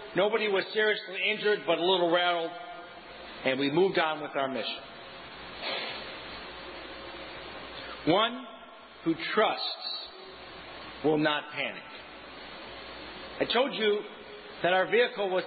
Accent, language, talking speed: American, English, 110 wpm